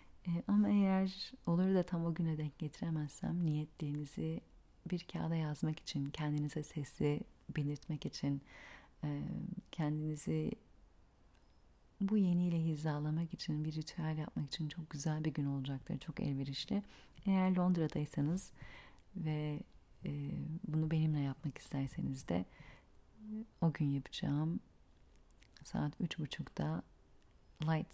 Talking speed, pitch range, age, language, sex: 105 wpm, 145-175 Hz, 40-59, Turkish, female